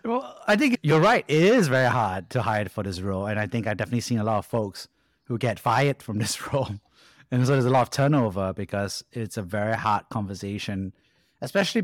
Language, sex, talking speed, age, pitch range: English, male, 225 wpm, 30-49, 105-130 Hz